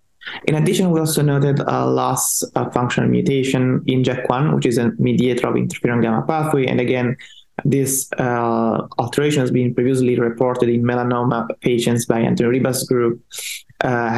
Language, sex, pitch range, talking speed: English, male, 120-135 Hz, 155 wpm